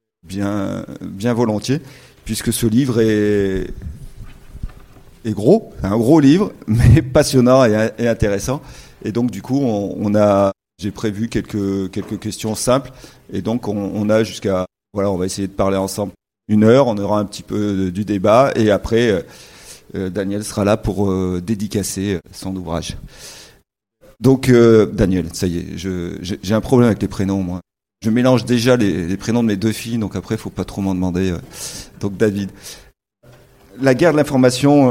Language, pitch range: French, 100-120 Hz